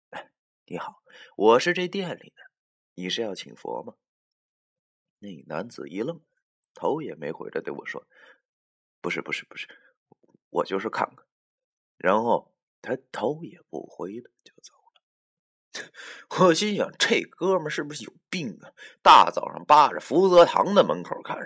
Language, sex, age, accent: Chinese, male, 30-49, native